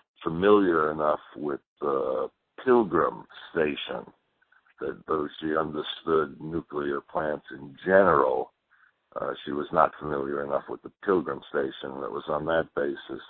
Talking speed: 135 wpm